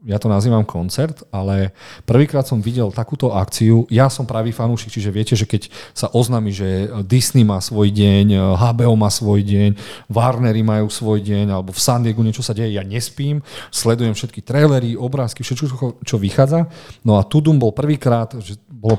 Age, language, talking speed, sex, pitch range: 40-59, Slovak, 180 wpm, male, 100-120 Hz